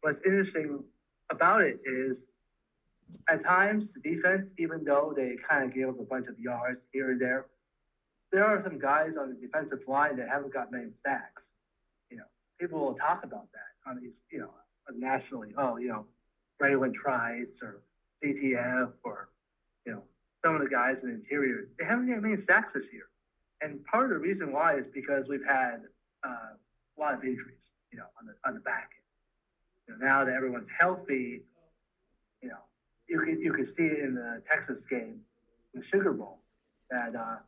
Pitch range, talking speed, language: 130-165 Hz, 185 wpm, English